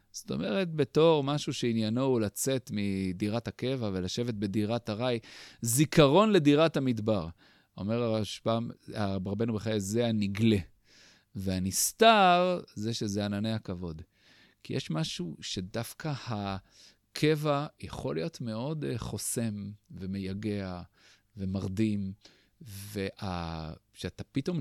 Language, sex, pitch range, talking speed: Hebrew, male, 100-130 Hz, 95 wpm